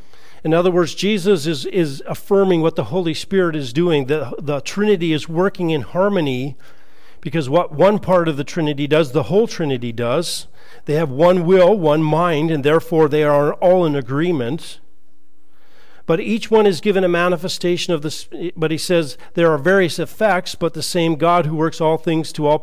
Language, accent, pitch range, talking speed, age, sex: English, American, 155-185 Hz, 190 wpm, 40-59, male